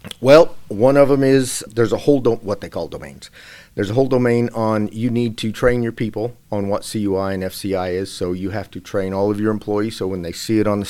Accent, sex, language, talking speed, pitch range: American, male, English, 255 wpm, 95-120 Hz